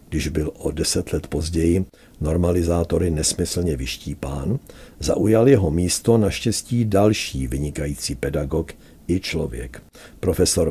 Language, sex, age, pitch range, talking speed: Czech, male, 60-79, 75-100 Hz, 105 wpm